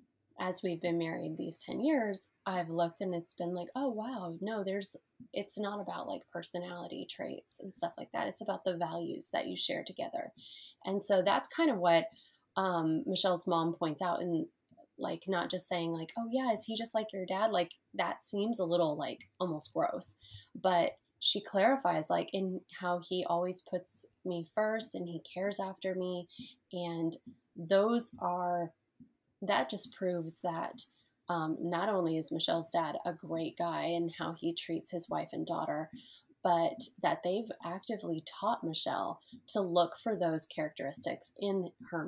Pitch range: 170-205 Hz